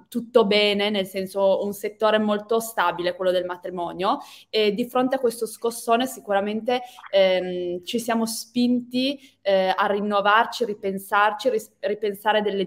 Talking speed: 135 wpm